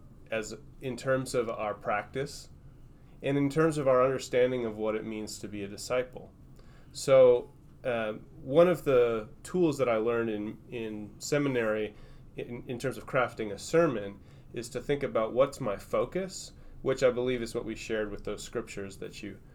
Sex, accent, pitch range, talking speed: male, American, 105-130 Hz, 180 wpm